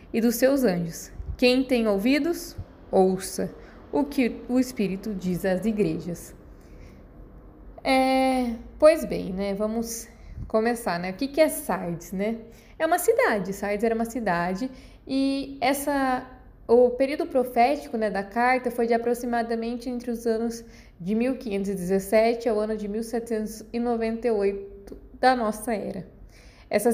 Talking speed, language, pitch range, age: 125 wpm, Portuguese, 210-265 Hz, 20-39